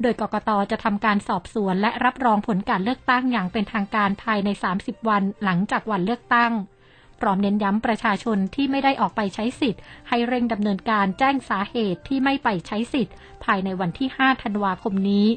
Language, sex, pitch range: Thai, female, 205-245 Hz